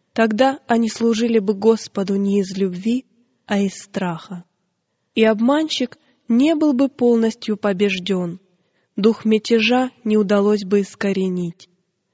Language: Russian